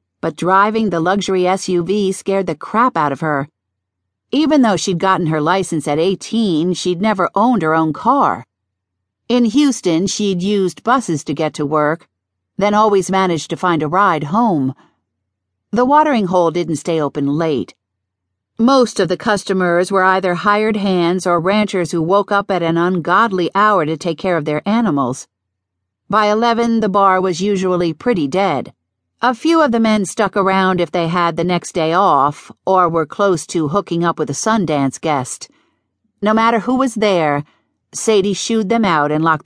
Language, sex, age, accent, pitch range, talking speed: English, female, 50-69, American, 155-210 Hz, 175 wpm